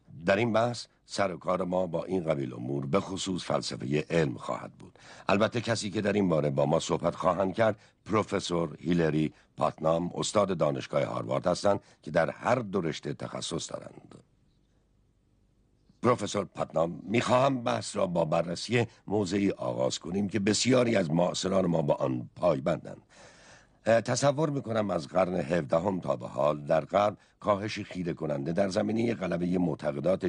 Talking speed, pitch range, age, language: 155 wpm, 80-110 Hz, 60-79, Persian